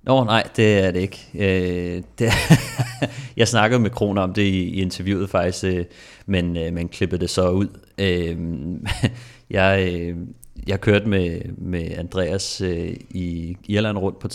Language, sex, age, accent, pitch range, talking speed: Danish, male, 30-49, native, 90-105 Hz, 130 wpm